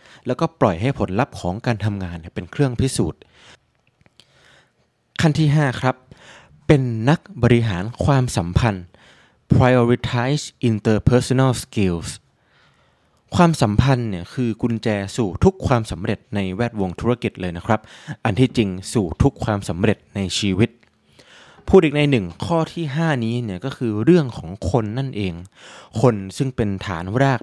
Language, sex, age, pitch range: Thai, male, 20-39, 100-135 Hz